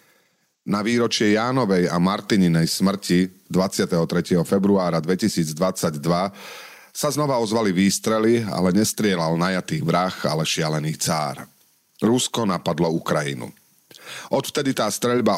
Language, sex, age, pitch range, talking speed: Slovak, male, 40-59, 85-115 Hz, 100 wpm